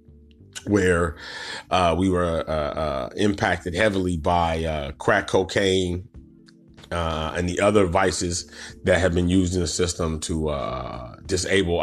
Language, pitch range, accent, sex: English, 90-115 Hz, American, male